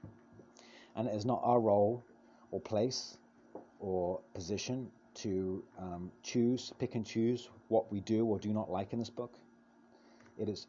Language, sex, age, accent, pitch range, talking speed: English, male, 30-49, British, 95-120 Hz, 155 wpm